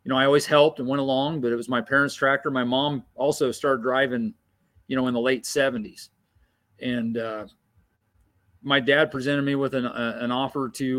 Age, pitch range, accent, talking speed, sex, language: 40-59, 115-140 Hz, American, 200 wpm, male, English